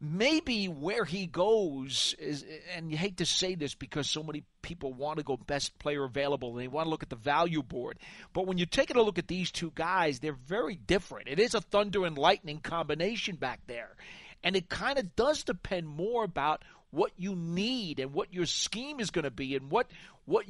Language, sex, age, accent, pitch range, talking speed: English, male, 40-59, American, 155-215 Hz, 215 wpm